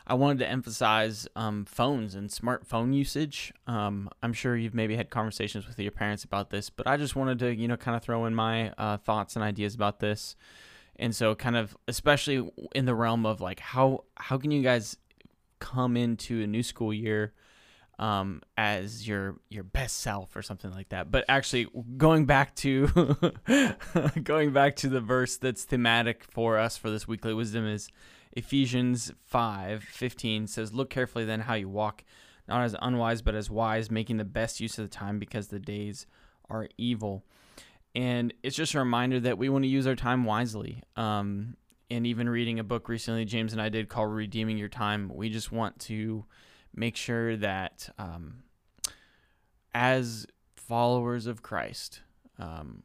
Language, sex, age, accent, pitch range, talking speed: English, male, 10-29, American, 105-125 Hz, 180 wpm